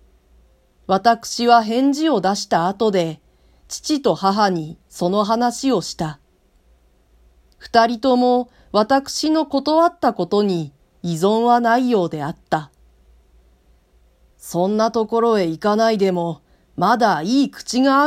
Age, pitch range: 40-59, 160-240 Hz